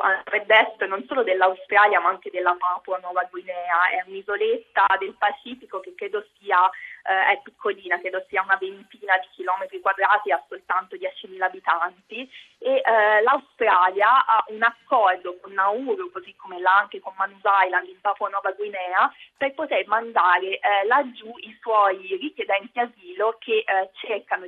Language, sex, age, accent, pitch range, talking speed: Italian, female, 20-39, native, 190-230 Hz, 150 wpm